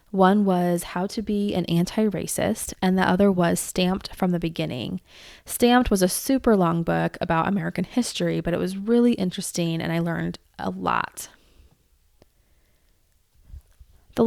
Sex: female